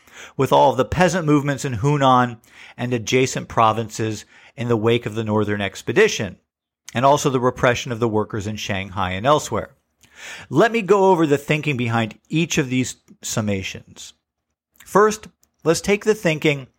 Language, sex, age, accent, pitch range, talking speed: English, male, 50-69, American, 110-145 Hz, 160 wpm